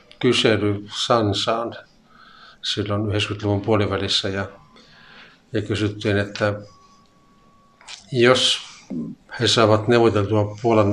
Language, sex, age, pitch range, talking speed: Finnish, male, 50-69, 105-110 Hz, 75 wpm